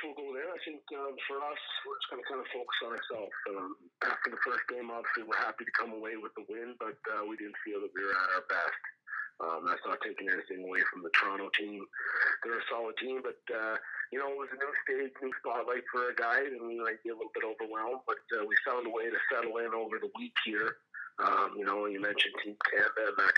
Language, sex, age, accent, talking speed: English, male, 40-59, American, 255 wpm